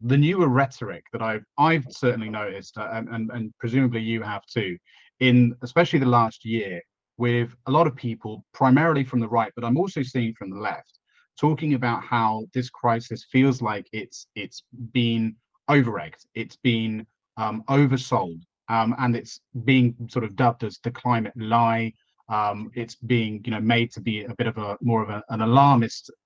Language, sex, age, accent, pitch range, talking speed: English, male, 30-49, British, 110-135 Hz, 180 wpm